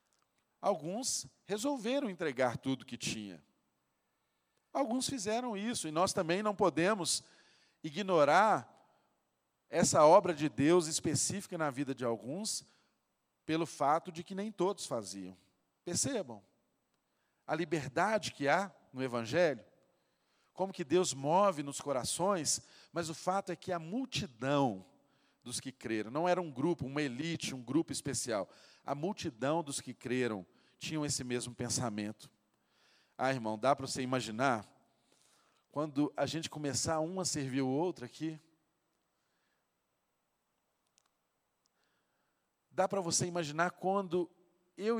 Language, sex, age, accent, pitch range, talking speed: Portuguese, male, 40-59, Brazilian, 135-185 Hz, 125 wpm